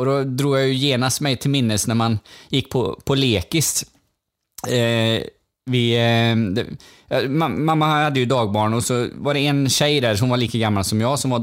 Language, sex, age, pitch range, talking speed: Swedish, male, 20-39, 110-145 Hz, 195 wpm